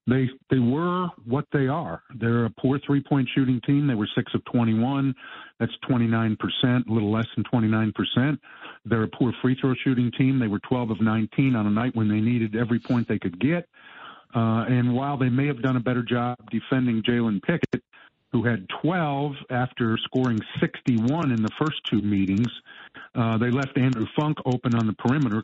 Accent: American